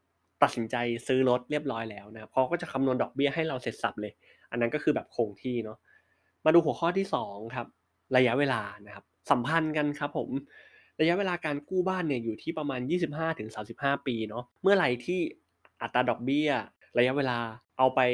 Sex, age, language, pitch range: male, 20-39, Thai, 115-150 Hz